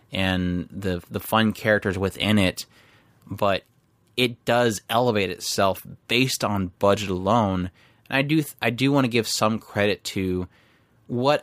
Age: 30-49